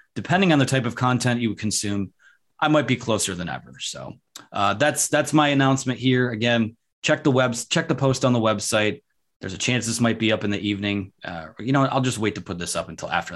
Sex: male